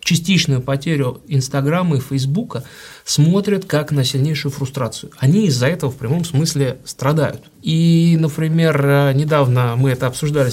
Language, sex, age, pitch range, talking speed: Russian, male, 30-49, 135-165 Hz, 130 wpm